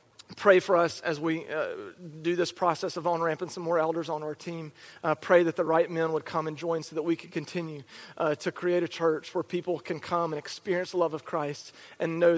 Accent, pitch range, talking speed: American, 160-185 Hz, 240 wpm